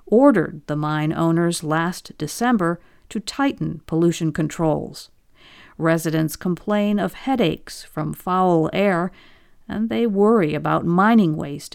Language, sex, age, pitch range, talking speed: English, female, 50-69, 160-220 Hz, 115 wpm